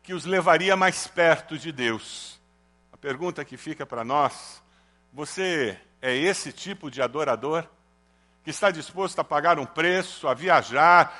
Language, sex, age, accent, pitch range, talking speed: Portuguese, male, 60-79, Brazilian, 120-190 Hz, 150 wpm